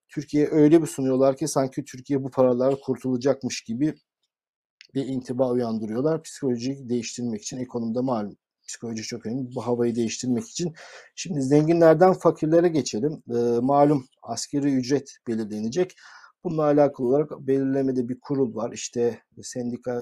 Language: Turkish